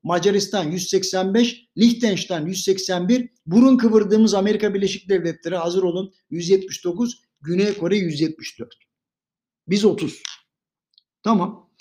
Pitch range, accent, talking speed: 175-235 Hz, native, 90 wpm